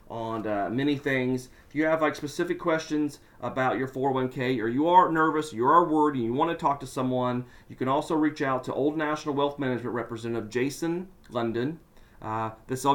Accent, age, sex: American, 40-59, male